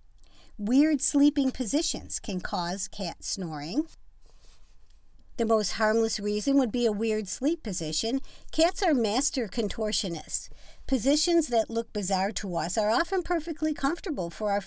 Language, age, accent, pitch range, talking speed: English, 50-69, American, 185-250 Hz, 135 wpm